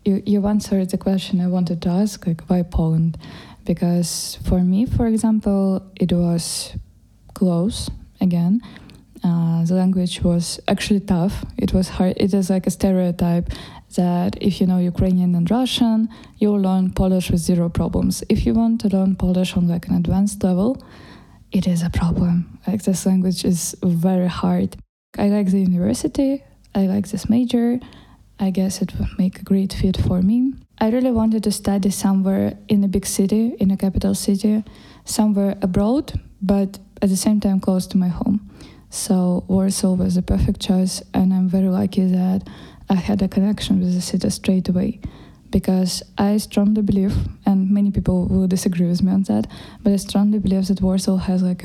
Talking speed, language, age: 180 wpm, Polish, 20-39